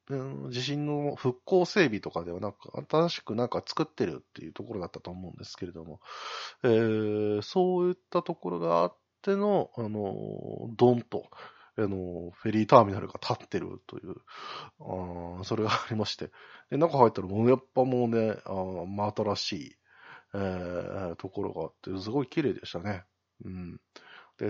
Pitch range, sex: 90-125 Hz, male